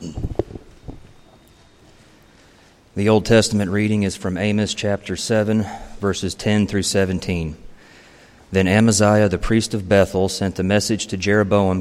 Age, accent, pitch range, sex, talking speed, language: 40-59, American, 90-105 Hz, male, 120 wpm, English